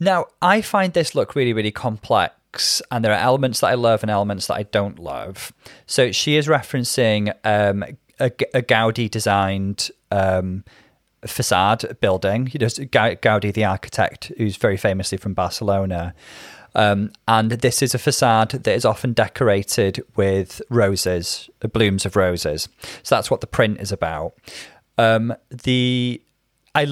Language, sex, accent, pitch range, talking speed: English, male, British, 100-130 Hz, 145 wpm